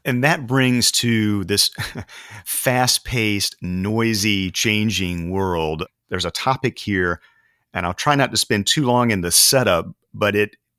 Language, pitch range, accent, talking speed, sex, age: English, 95-115 Hz, American, 145 wpm, male, 40-59